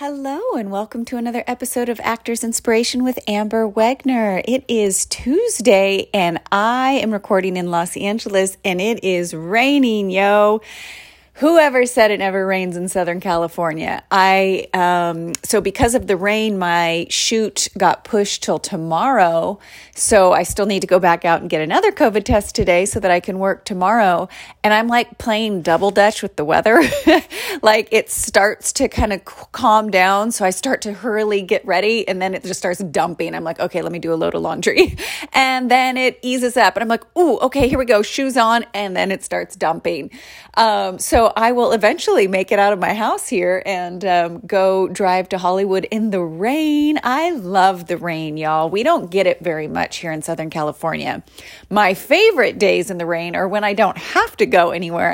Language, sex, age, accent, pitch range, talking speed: English, female, 30-49, American, 180-235 Hz, 195 wpm